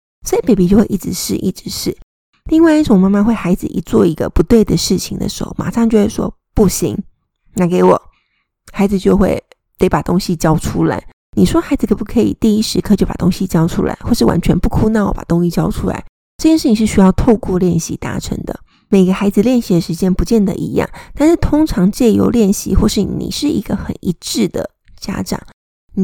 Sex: female